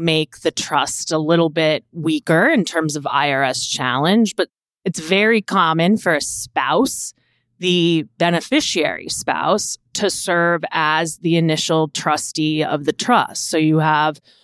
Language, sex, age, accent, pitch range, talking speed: English, female, 30-49, American, 155-180 Hz, 140 wpm